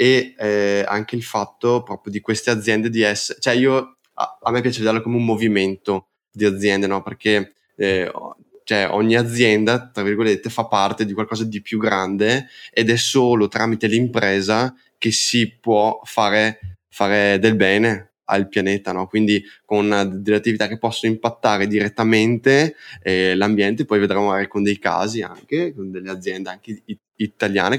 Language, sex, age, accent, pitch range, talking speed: Italian, male, 10-29, native, 100-115 Hz, 165 wpm